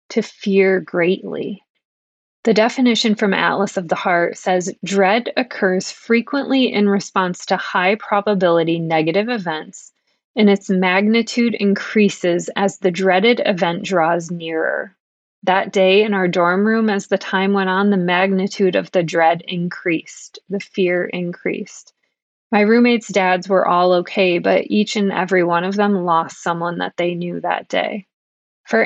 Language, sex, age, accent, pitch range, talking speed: English, female, 20-39, American, 180-215 Hz, 150 wpm